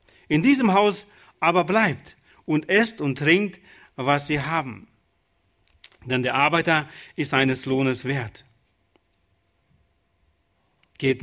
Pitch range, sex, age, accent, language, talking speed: 130-205 Hz, male, 40-59, German, German, 105 wpm